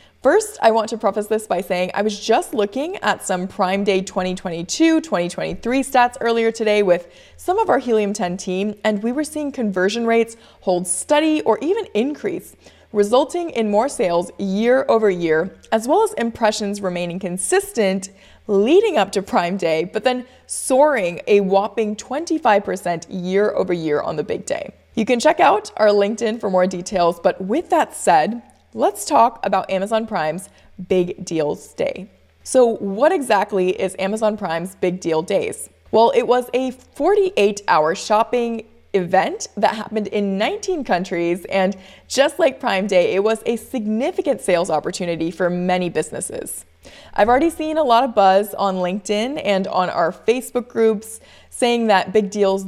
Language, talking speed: English, 165 wpm